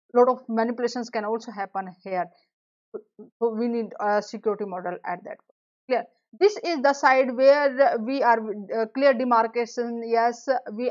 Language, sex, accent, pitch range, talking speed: English, female, Indian, 220-275 Hz, 160 wpm